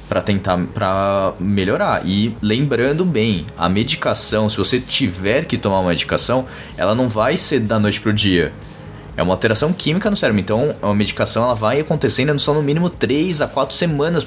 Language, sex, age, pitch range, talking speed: Portuguese, male, 20-39, 100-130 Hz, 185 wpm